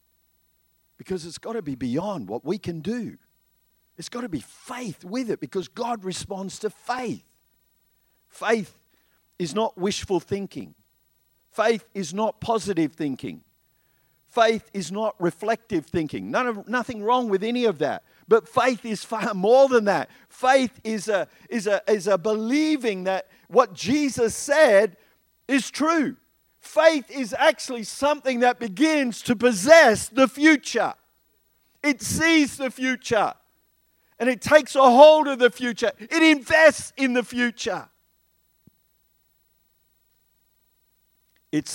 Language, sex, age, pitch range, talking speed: English, male, 50-69, 160-250 Hz, 135 wpm